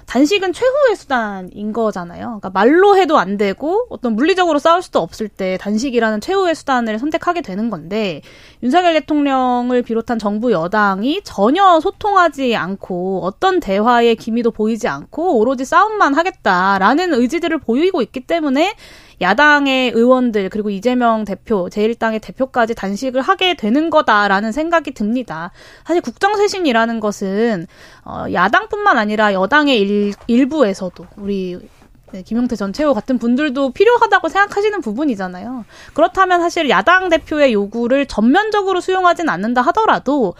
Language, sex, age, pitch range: Korean, female, 20-39, 215-330 Hz